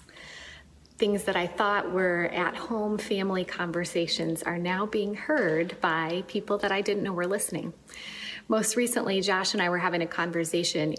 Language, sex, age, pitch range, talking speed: English, female, 30-49, 175-220 Hz, 165 wpm